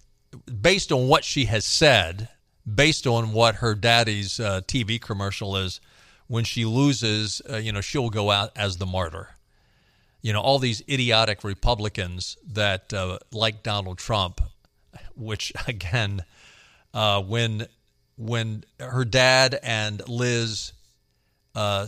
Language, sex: English, male